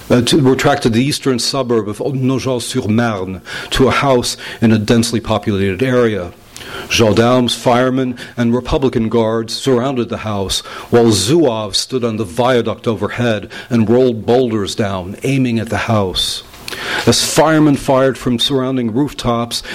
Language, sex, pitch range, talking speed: English, male, 110-130 Hz, 140 wpm